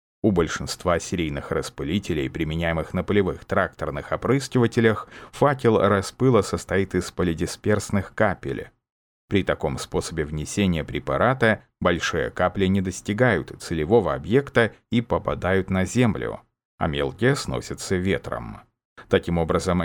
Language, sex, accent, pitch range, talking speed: Russian, male, native, 85-110 Hz, 110 wpm